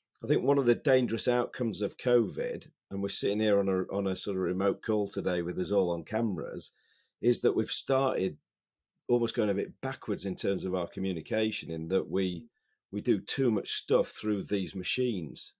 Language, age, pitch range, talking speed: English, 40-59, 95-120 Hz, 200 wpm